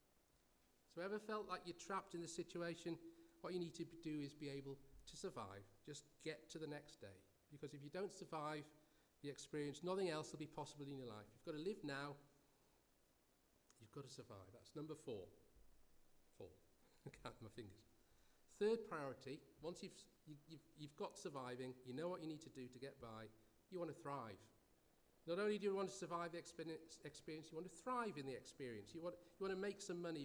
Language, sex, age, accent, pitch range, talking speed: English, male, 40-59, British, 130-170 Hz, 205 wpm